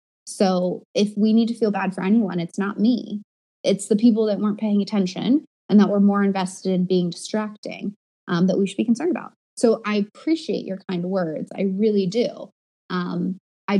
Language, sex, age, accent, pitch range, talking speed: English, female, 20-39, American, 185-210 Hz, 195 wpm